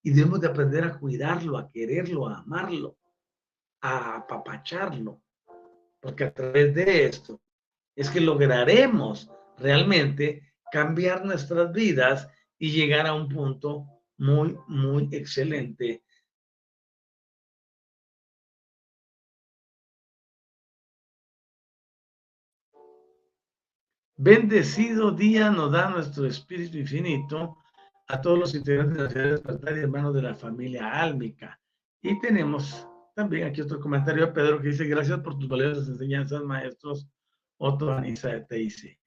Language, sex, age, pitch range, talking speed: Spanish, male, 50-69, 135-175 Hz, 110 wpm